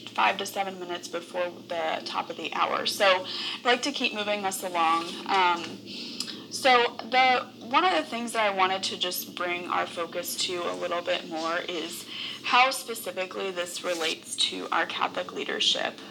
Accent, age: American, 20-39